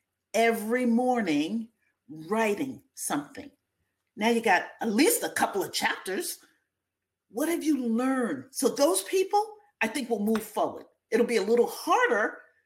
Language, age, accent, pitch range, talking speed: English, 40-59, American, 225-300 Hz, 140 wpm